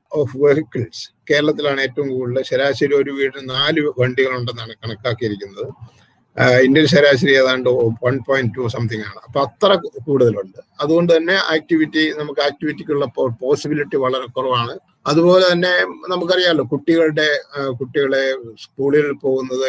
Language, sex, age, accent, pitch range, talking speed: Malayalam, male, 50-69, native, 135-180 Hz, 115 wpm